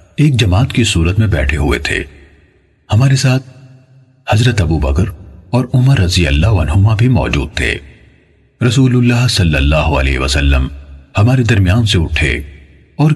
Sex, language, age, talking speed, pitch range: male, Urdu, 40-59, 140 wpm, 75-125 Hz